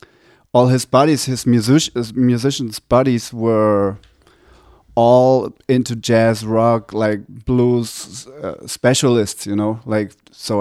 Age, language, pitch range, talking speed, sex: 30-49, English, 100-120 Hz, 115 wpm, male